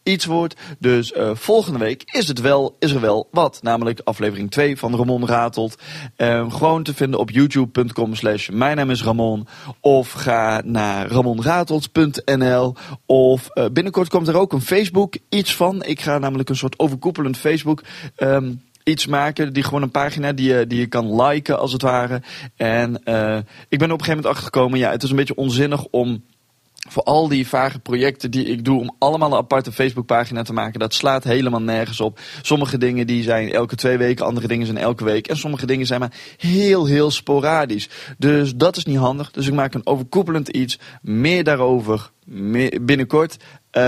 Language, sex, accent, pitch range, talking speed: Dutch, male, Dutch, 120-150 Hz, 185 wpm